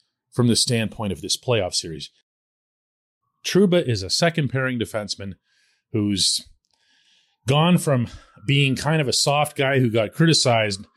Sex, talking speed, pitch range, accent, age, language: male, 130 wpm, 115-165 Hz, American, 40-59, English